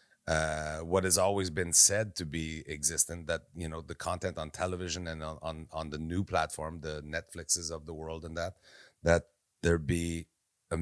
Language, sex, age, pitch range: English, male, 30-49, 85-115 Hz